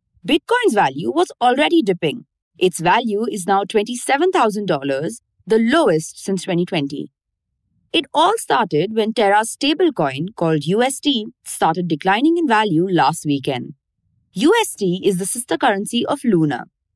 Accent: Indian